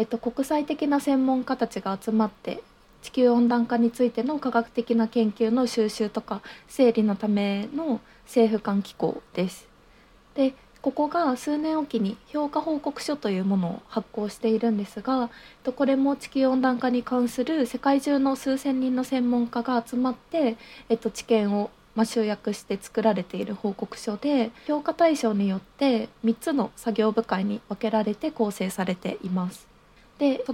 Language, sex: Japanese, female